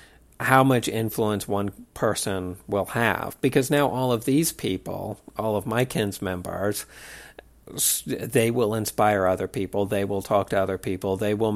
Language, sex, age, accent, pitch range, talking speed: English, male, 50-69, American, 95-115 Hz, 160 wpm